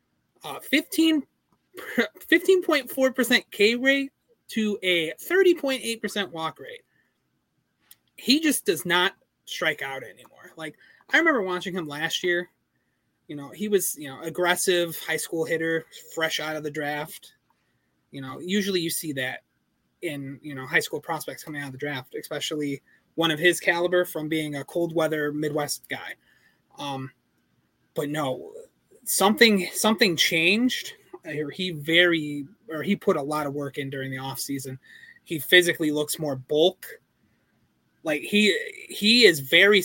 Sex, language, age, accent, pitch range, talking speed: male, English, 30-49, American, 150-210 Hz, 150 wpm